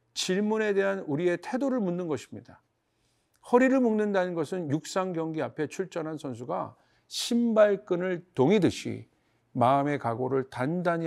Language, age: Korean, 50-69